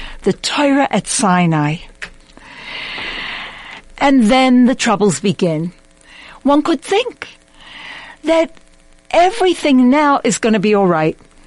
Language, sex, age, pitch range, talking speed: English, female, 60-79, 230-330 Hz, 105 wpm